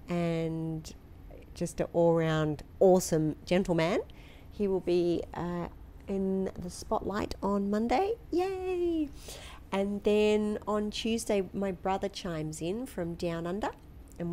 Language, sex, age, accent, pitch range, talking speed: English, female, 40-59, Australian, 165-200 Hz, 115 wpm